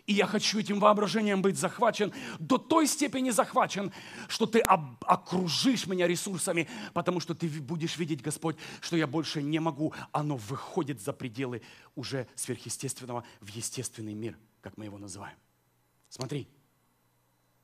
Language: Russian